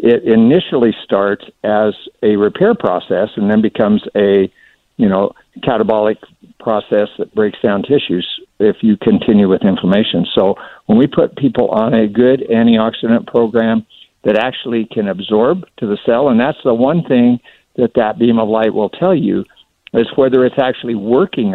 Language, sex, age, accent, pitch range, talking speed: English, male, 60-79, American, 110-145 Hz, 165 wpm